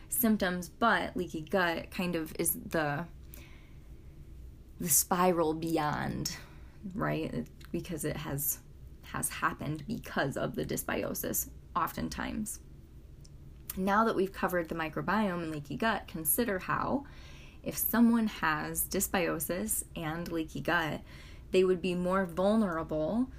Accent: American